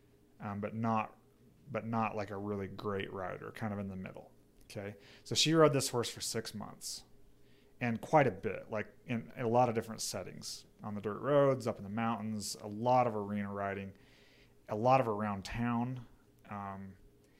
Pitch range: 100-115 Hz